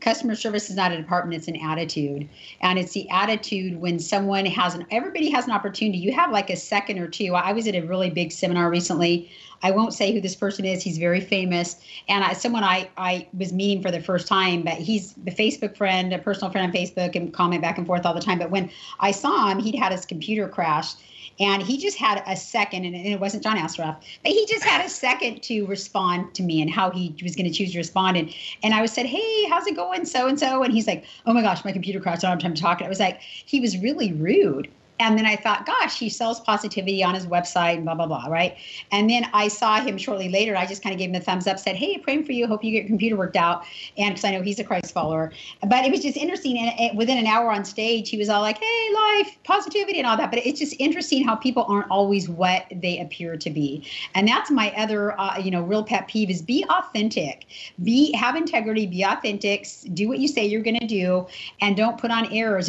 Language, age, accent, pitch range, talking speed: English, 40-59, American, 180-230 Hz, 250 wpm